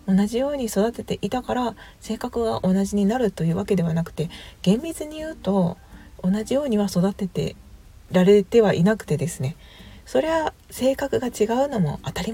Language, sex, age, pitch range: Japanese, female, 40-59, 165-225 Hz